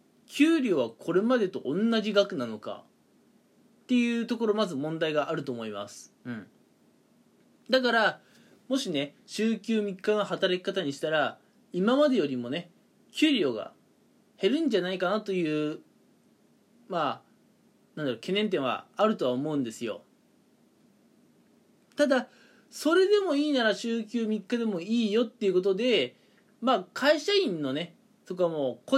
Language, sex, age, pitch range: Japanese, male, 20-39, 160-230 Hz